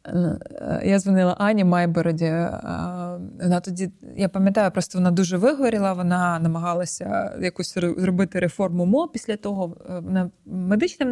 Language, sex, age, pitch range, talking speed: Ukrainian, female, 20-39, 175-200 Hz, 115 wpm